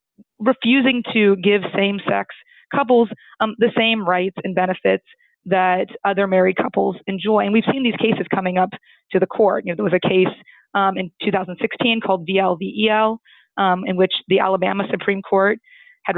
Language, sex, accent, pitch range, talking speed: English, female, American, 190-215 Hz, 165 wpm